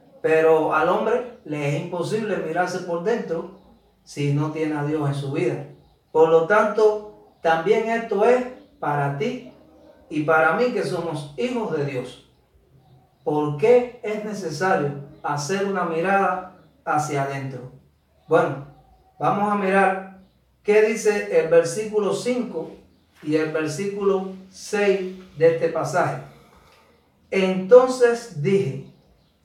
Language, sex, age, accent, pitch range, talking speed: Spanish, male, 40-59, American, 150-215 Hz, 120 wpm